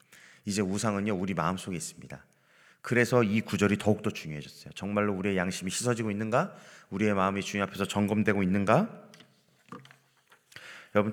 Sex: male